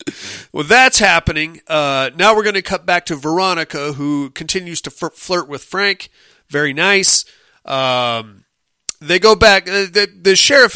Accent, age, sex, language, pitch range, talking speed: American, 40-59, male, English, 145-200 Hz, 150 wpm